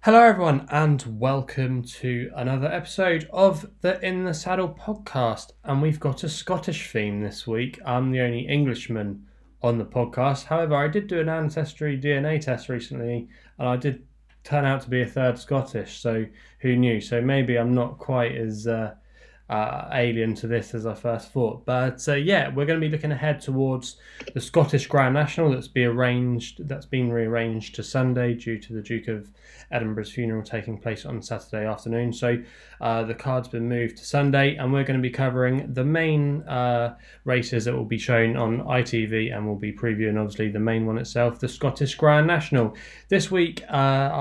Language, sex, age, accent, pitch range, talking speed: English, male, 10-29, British, 115-145 Hz, 190 wpm